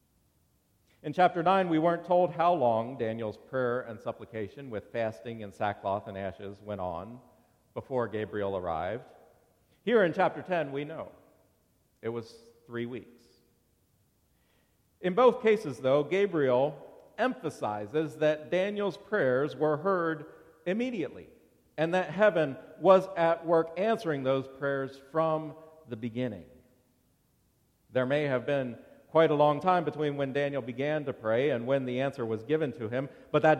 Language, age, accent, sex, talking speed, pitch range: English, 50-69, American, male, 145 wpm, 115-165 Hz